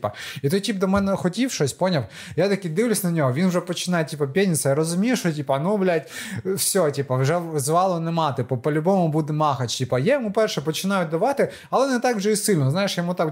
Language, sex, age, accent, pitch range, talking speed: Ukrainian, male, 20-39, native, 140-185 Hz, 215 wpm